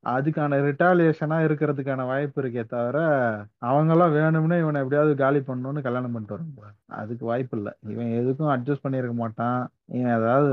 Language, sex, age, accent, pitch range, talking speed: Tamil, male, 30-49, native, 115-150 Hz, 150 wpm